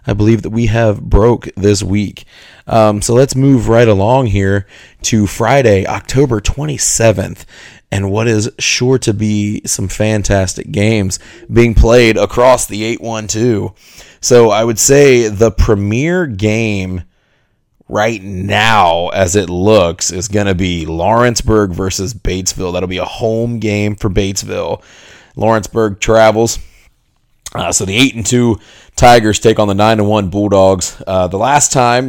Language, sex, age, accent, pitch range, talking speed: English, male, 30-49, American, 95-115 Hz, 150 wpm